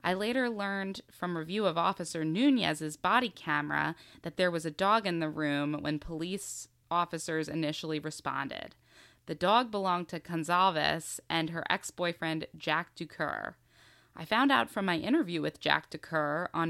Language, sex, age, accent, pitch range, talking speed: English, female, 20-39, American, 160-200 Hz, 155 wpm